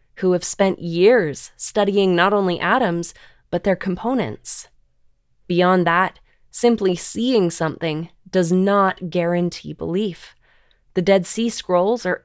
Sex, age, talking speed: female, 20-39, 120 wpm